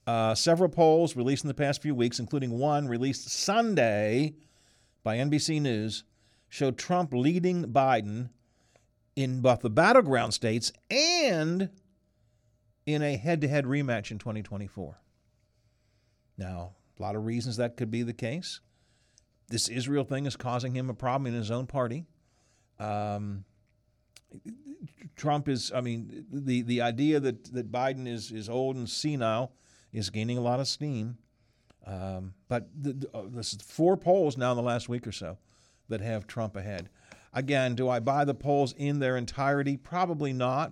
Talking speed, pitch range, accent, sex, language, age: 160 wpm, 115-145 Hz, American, male, English, 50-69